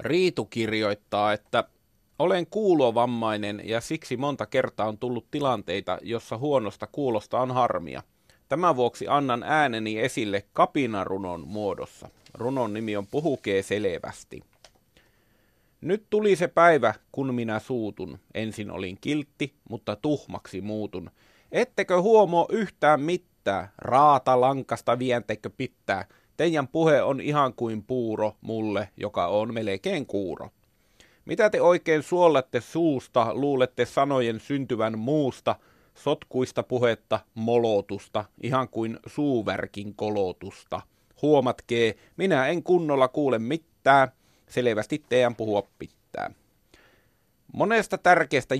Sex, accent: male, native